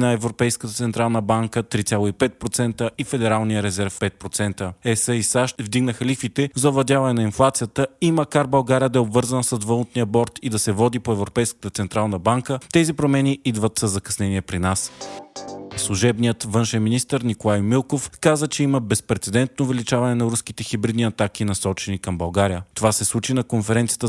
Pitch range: 105-125 Hz